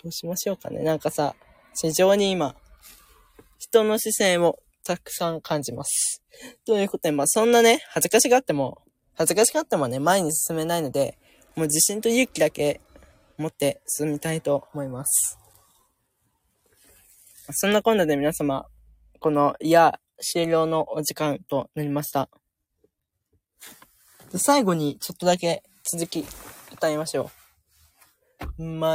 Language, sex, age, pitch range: Japanese, female, 20-39, 145-190 Hz